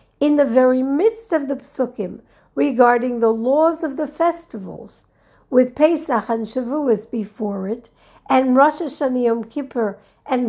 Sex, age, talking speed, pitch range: female, 50-69, 145 wpm, 220-300 Hz